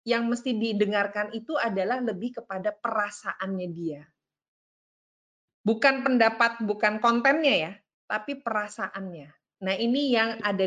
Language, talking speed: English, 110 wpm